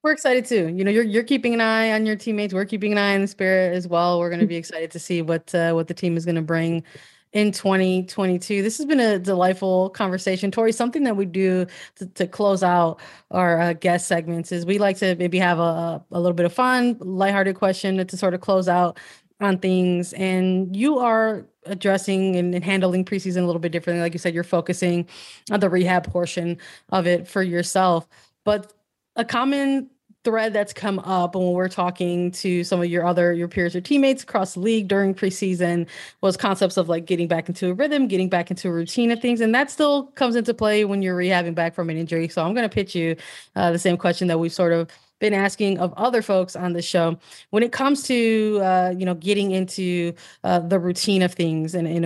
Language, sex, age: English, female, 20-39